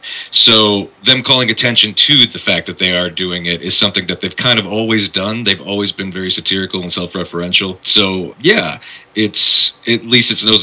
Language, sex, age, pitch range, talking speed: English, male, 30-49, 90-110 Hz, 190 wpm